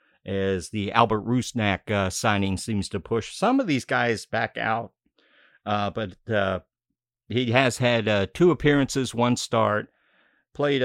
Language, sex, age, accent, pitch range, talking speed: English, male, 50-69, American, 105-135 Hz, 150 wpm